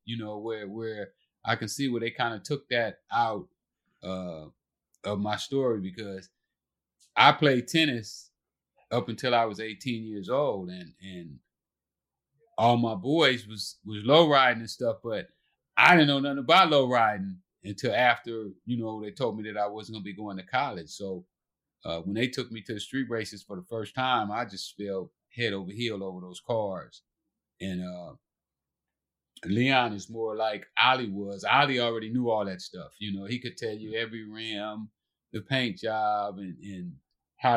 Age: 30-49